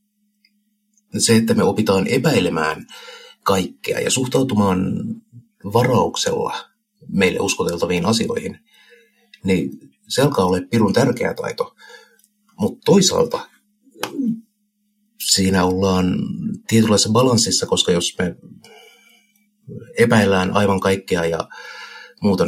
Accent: native